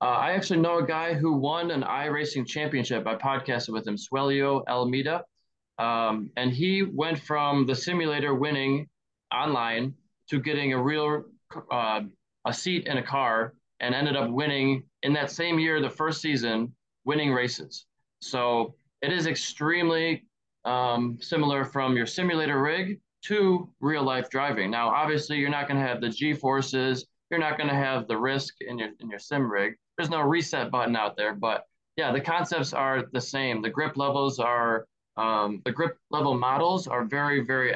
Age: 20-39